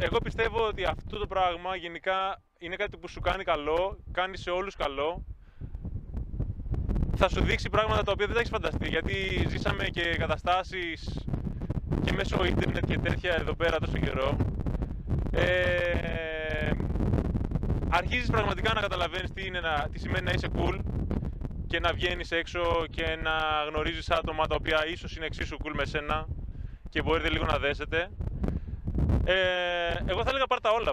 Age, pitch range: 20-39, 130-185 Hz